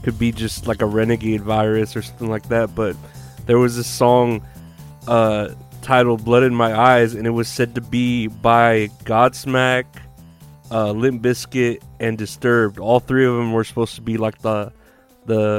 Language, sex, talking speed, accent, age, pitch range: English, male, 175 wpm, American, 20-39, 110-125 Hz